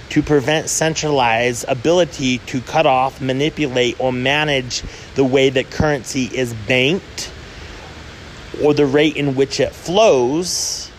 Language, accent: English, American